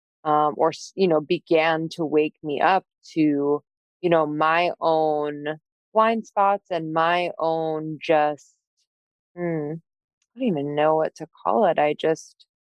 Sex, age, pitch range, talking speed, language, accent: female, 20-39, 155-190 Hz, 145 wpm, English, American